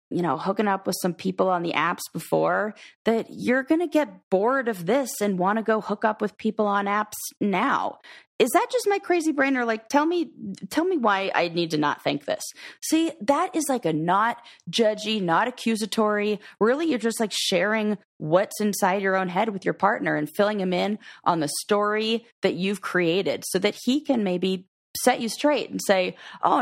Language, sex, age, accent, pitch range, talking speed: English, female, 30-49, American, 185-235 Hz, 205 wpm